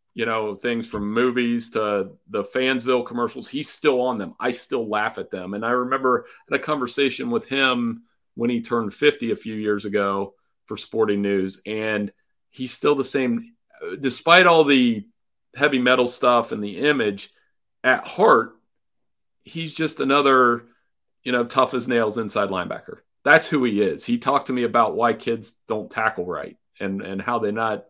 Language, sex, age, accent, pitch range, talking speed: English, male, 40-59, American, 110-130 Hz, 175 wpm